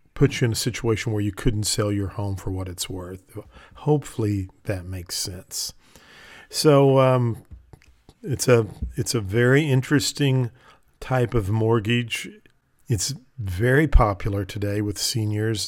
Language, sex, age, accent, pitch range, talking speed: English, male, 50-69, American, 105-130 Hz, 140 wpm